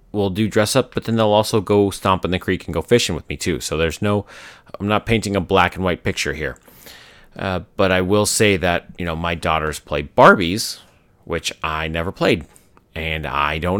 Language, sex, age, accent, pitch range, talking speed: English, male, 30-49, American, 85-110 Hz, 220 wpm